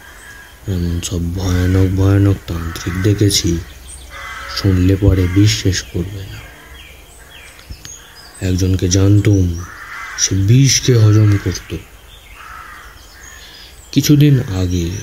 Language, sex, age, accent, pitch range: Bengali, male, 30-49, native, 85-100 Hz